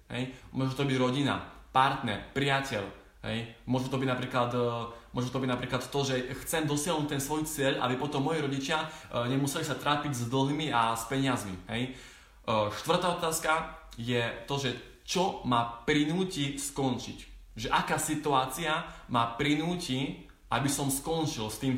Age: 20-39